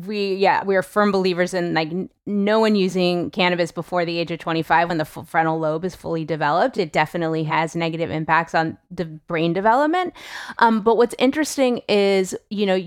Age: 30-49